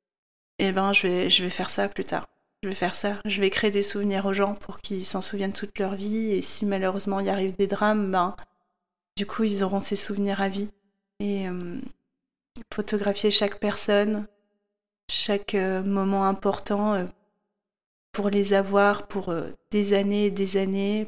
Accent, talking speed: French, 185 wpm